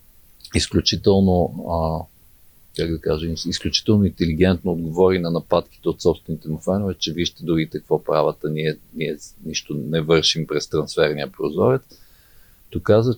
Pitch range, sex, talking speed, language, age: 85-105 Hz, male, 130 wpm, Bulgarian, 50-69